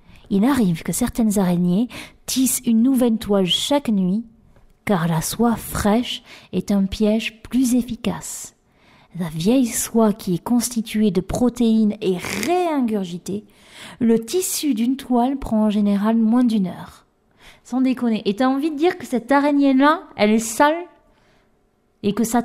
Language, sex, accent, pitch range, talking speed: French, female, French, 210-285 Hz, 150 wpm